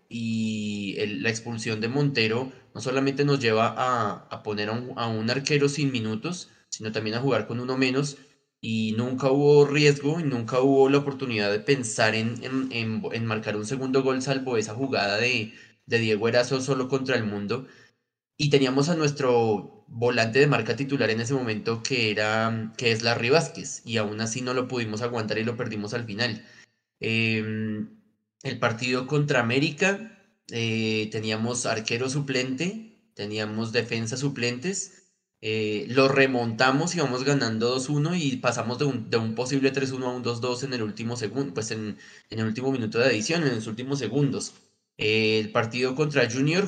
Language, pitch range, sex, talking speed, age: Spanish, 110-135 Hz, male, 175 wpm, 20-39